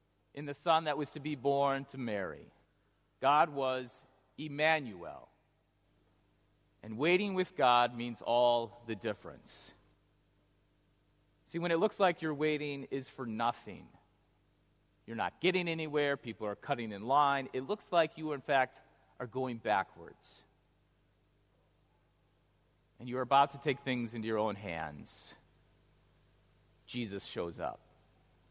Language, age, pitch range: English, 40-59, 100-145 Hz